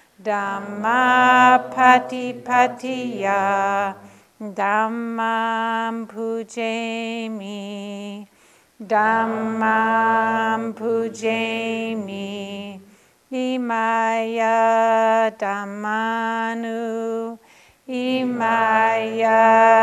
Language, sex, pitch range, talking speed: English, female, 215-230 Hz, 30 wpm